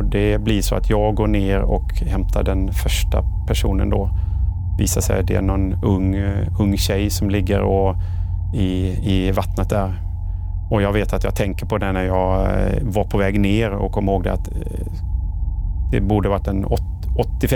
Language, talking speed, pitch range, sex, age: Swedish, 175 wpm, 80-105 Hz, male, 30-49